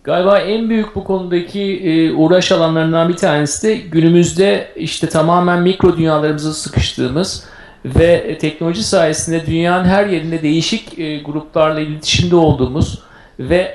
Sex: male